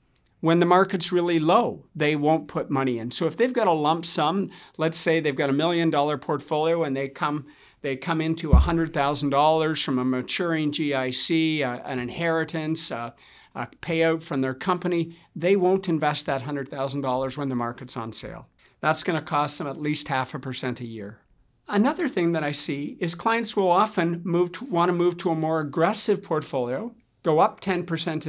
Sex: male